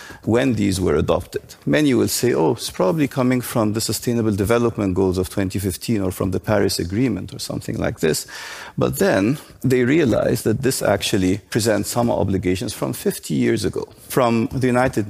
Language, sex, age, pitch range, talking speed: German, male, 50-69, 95-120 Hz, 175 wpm